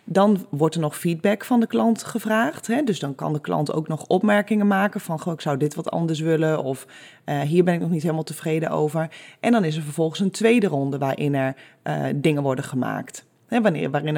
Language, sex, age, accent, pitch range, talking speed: Dutch, female, 20-39, Dutch, 150-205 Hz, 205 wpm